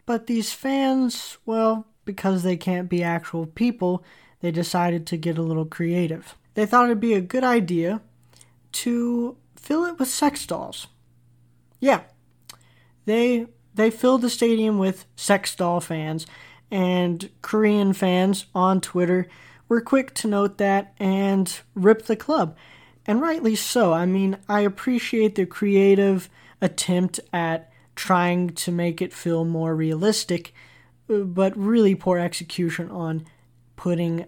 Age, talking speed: 20-39, 135 wpm